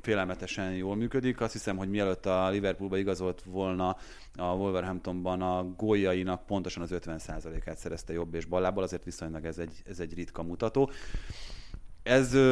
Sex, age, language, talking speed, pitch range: male, 30-49, Hungarian, 150 wpm, 85-105 Hz